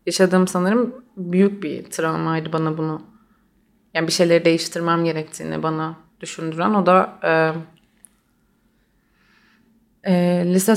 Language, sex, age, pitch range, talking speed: Turkish, female, 30-49, 165-205 Hz, 105 wpm